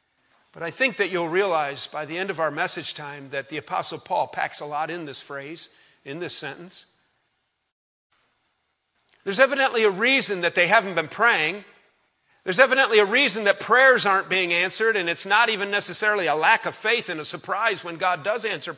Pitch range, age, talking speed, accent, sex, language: 185-235 Hz, 50-69, 190 wpm, American, male, English